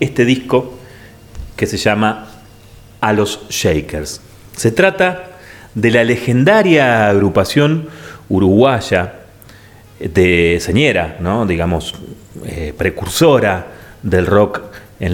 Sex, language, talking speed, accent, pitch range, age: male, Spanish, 90 wpm, Argentinian, 95-140 Hz, 30-49